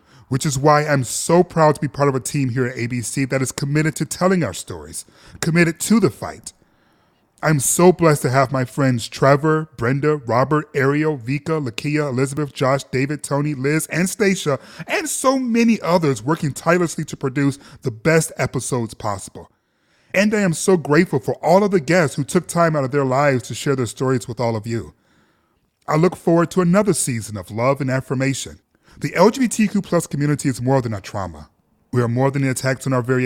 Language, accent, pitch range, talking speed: English, American, 125-170 Hz, 200 wpm